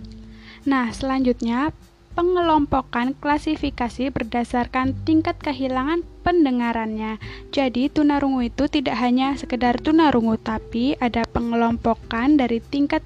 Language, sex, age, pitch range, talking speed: Indonesian, female, 10-29, 235-300 Hz, 100 wpm